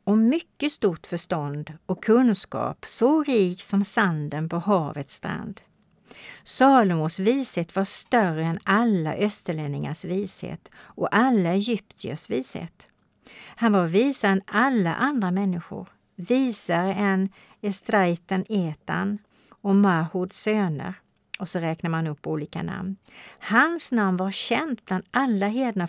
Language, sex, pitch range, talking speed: Swedish, female, 175-225 Hz, 125 wpm